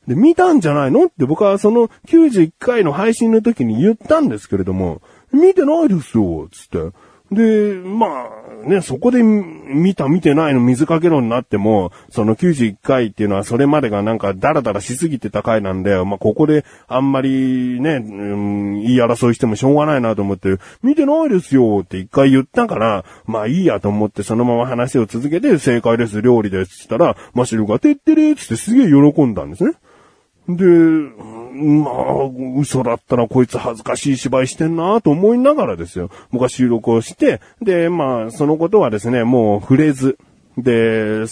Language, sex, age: Japanese, male, 30-49